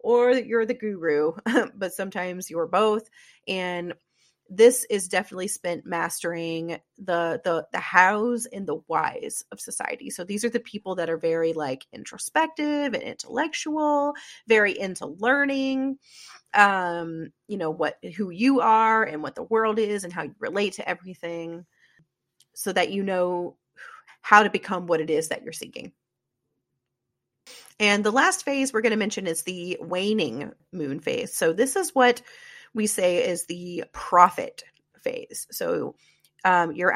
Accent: American